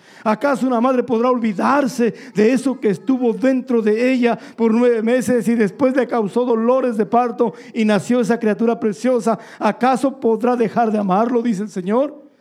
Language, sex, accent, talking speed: Spanish, male, Mexican, 170 wpm